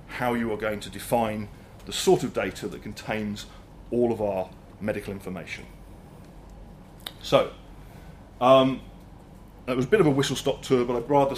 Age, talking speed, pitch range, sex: 40-59, 165 wpm, 105-145 Hz, male